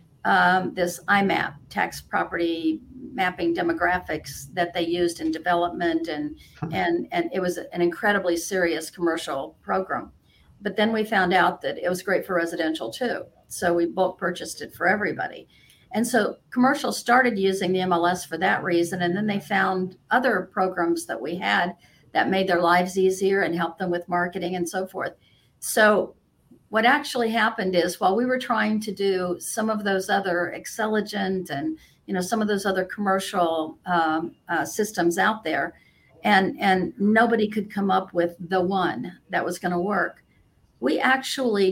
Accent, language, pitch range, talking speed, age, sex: American, English, 175-210 Hz, 170 wpm, 50-69, female